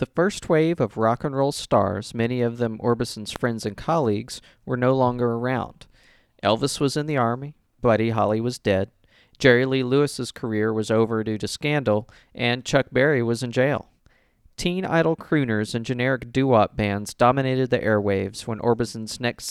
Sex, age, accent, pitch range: male, 40-59, American, 110-140 Hz